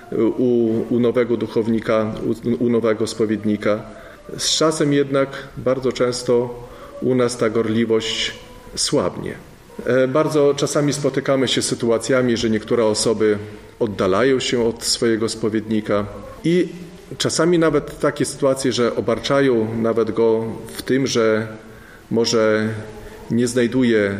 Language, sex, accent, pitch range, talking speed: Polish, male, native, 110-140 Hz, 115 wpm